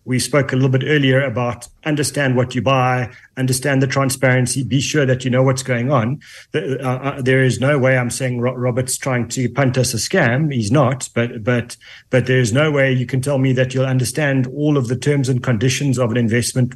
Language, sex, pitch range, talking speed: English, male, 125-140 Hz, 210 wpm